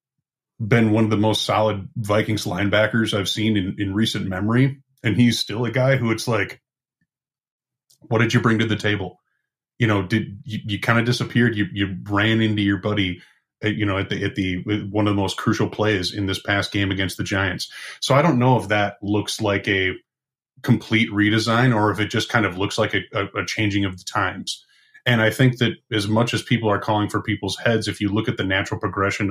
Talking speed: 225 wpm